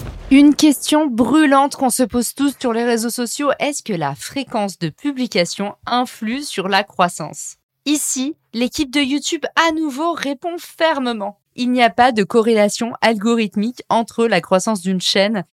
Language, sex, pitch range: French, female, 190-250 Hz